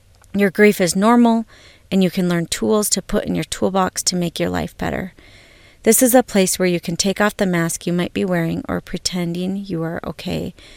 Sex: female